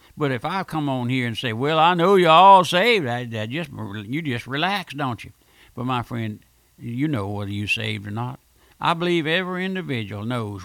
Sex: male